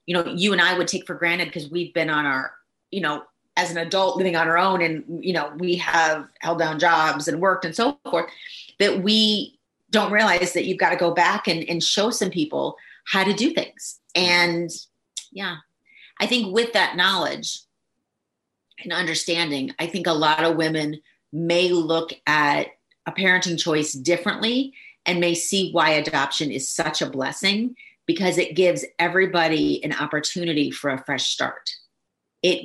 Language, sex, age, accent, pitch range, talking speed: English, female, 30-49, American, 155-185 Hz, 180 wpm